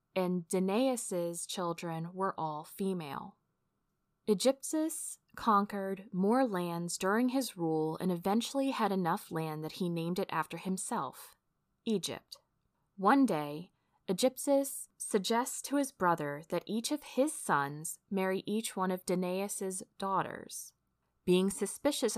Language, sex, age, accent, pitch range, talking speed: English, female, 20-39, American, 175-220 Hz, 120 wpm